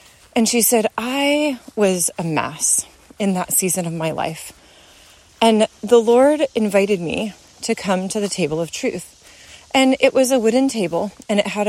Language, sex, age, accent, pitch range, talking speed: English, female, 30-49, American, 200-245 Hz, 175 wpm